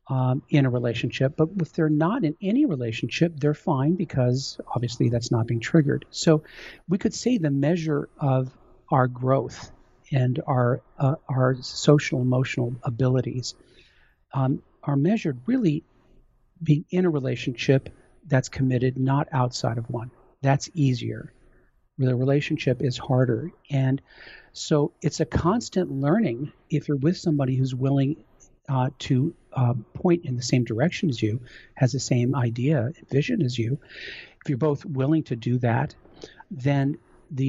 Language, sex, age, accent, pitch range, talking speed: English, male, 50-69, American, 120-150 Hz, 150 wpm